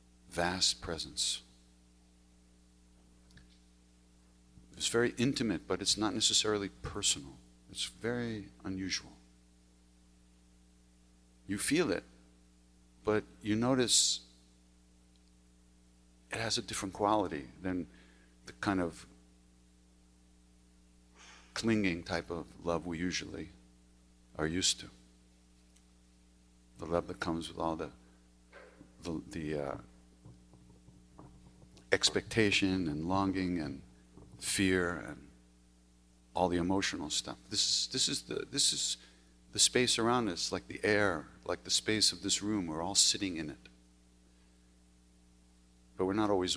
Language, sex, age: English, male, 50-69